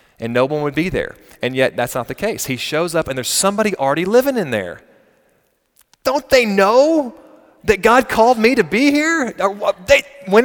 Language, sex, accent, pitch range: English, male, American, 125-195 Hz